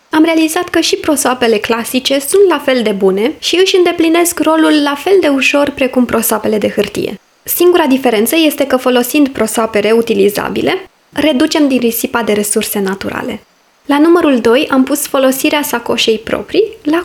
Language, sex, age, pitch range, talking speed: Romanian, female, 20-39, 225-290 Hz, 160 wpm